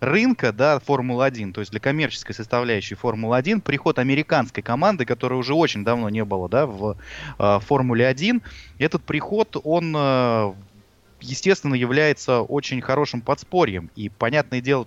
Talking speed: 140 wpm